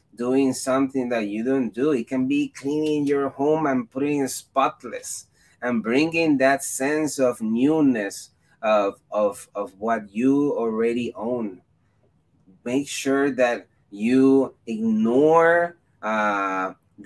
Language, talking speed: English, 125 wpm